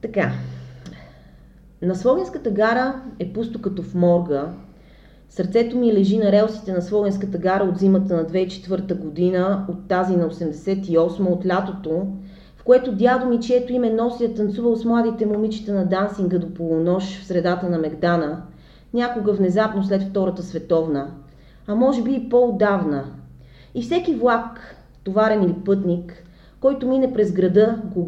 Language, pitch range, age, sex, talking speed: Bulgarian, 175-220 Hz, 30-49, female, 145 wpm